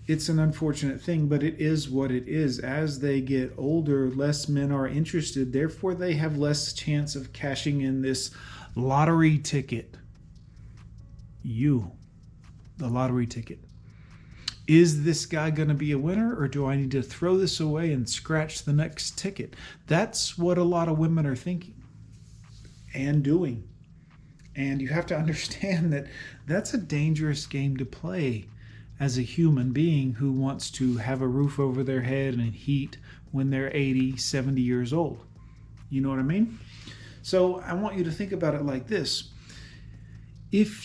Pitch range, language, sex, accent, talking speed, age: 130-155 Hz, English, male, American, 165 wpm, 40-59